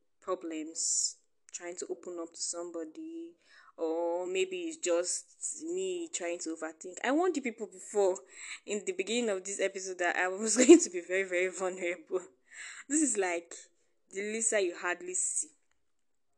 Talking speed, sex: 160 wpm, female